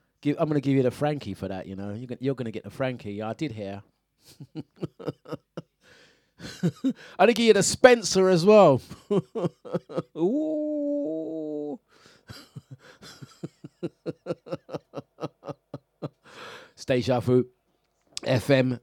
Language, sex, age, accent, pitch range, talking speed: English, male, 30-49, British, 115-170 Hz, 100 wpm